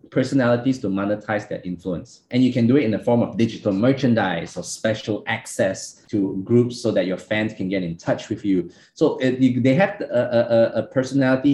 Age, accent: 20-39, Malaysian